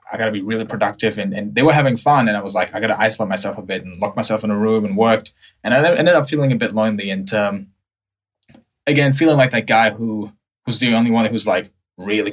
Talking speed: 265 wpm